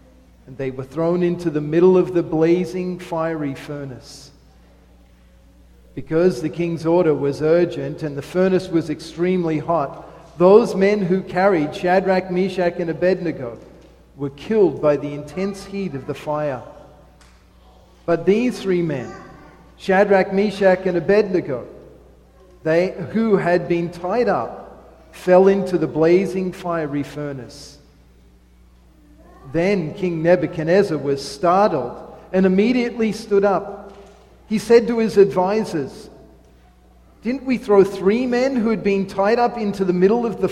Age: 40-59